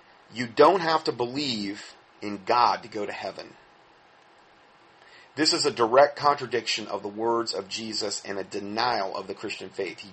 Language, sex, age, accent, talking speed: English, male, 40-59, American, 170 wpm